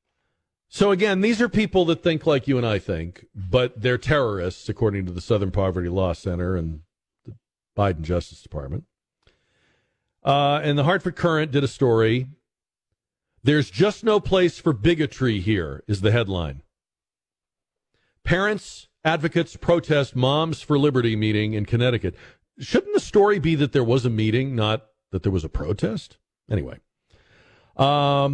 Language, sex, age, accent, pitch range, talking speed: English, male, 50-69, American, 105-150 Hz, 150 wpm